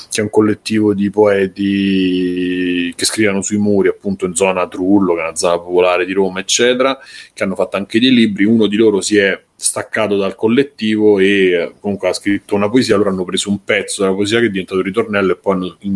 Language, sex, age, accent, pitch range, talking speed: Italian, male, 30-49, native, 95-115 Hz, 205 wpm